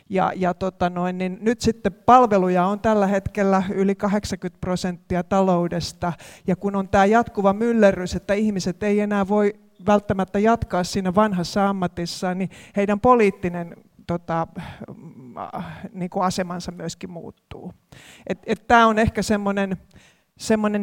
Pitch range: 185-220 Hz